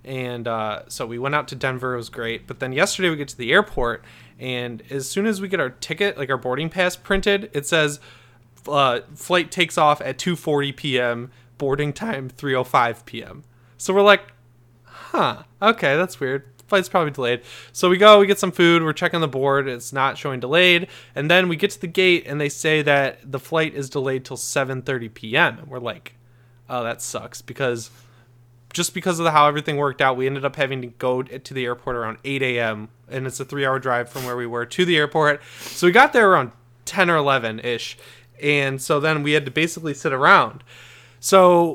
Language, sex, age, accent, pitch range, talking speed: English, male, 20-39, American, 125-160 Hz, 210 wpm